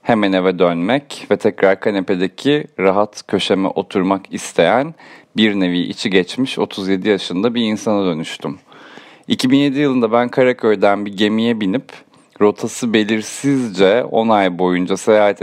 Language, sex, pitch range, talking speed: Turkish, male, 95-120 Hz, 125 wpm